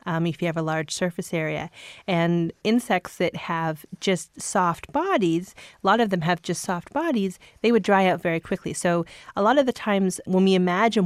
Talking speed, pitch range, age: 205 wpm, 170-210 Hz, 30-49